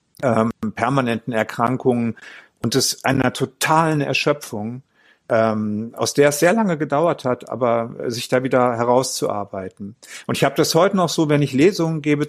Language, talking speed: German, 155 wpm